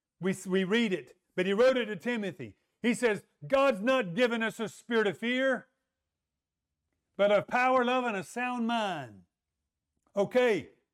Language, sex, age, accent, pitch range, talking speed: English, male, 50-69, American, 200-250 Hz, 160 wpm